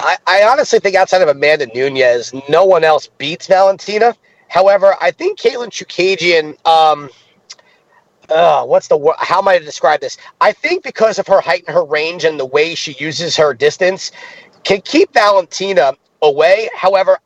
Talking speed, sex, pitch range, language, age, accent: 170 wpm, male, 170-265 Hz, English, 30-49, American